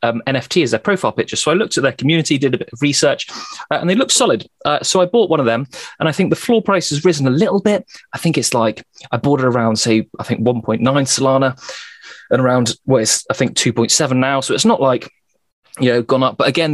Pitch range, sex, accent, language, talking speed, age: 120-150 Hz, male, British, English, 255 wpm, 30-49